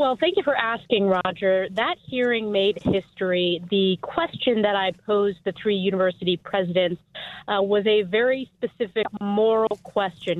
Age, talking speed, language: 30-49, 150 wpm, English